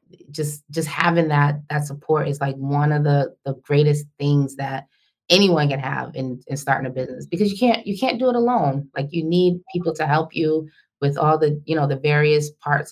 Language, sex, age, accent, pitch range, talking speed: English, female, 20-39, American, 145-195 Hz, 215 wpm